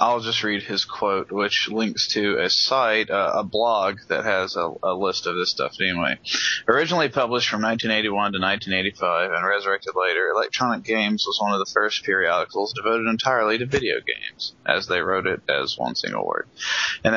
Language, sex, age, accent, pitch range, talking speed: English, male, 20-39, American, 105-120 Hz, 185 wpm